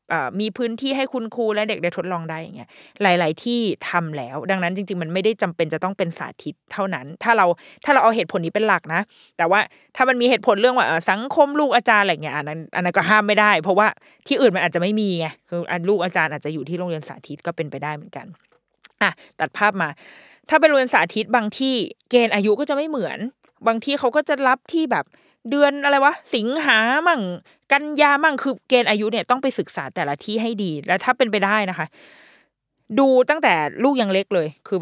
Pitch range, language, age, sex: 175-250 Hz, Thai, 20-39, female